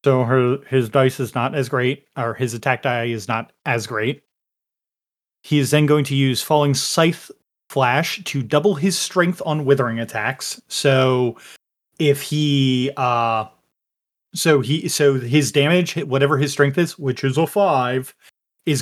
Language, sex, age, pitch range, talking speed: English, male, 30-49, 130-160 Hz, 160 wpm